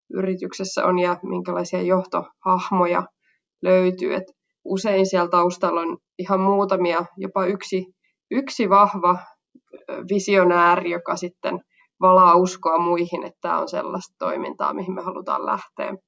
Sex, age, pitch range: female, 20-39, 175-200 Hz